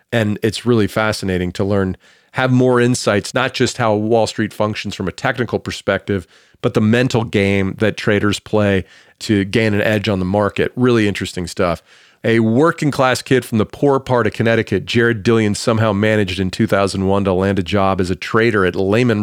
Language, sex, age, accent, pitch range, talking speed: English, male, 40-59, American, 100-125 Hz, 190 wpm